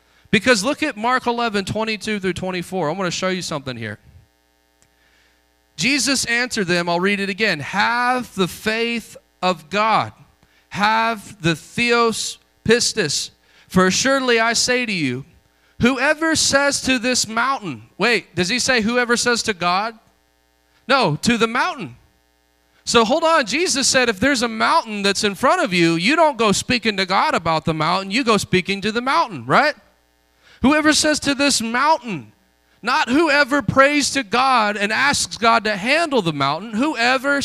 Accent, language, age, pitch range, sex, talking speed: American, English, 30-49, 165-240 Hz, male, 165 wpm